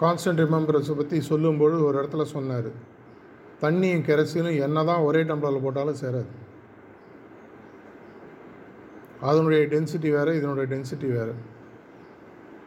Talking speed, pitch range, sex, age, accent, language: 100 wpm, 140-165 Hz, male, 50-69, native, Tamil